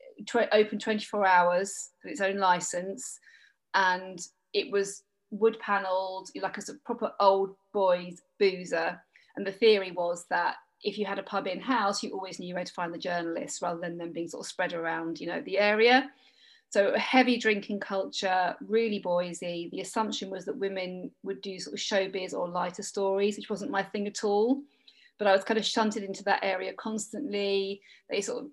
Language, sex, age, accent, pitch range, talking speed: English, female, 40-59, British, 185-220 Hz, 185 wpm